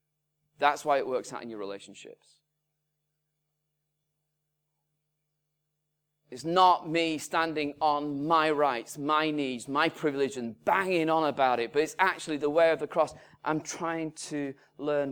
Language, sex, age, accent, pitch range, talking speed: English, male, 30-49, British, 140-155 Hz, 145 wpm